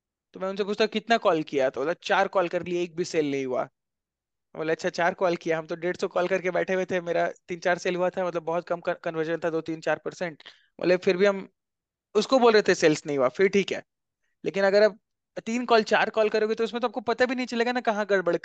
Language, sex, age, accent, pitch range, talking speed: Hindi, male, 20-39, native, 180-225 Hz, 265 wpm